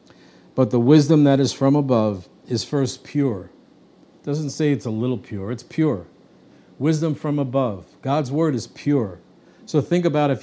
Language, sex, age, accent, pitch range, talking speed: English, male, 50-69, American, 120-145 Hz, 175 wpm